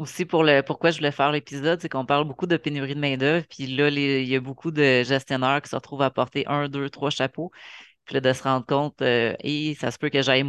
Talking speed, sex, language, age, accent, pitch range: 275 wpm, female, French, 30-49, Canadian, 130-150 Hz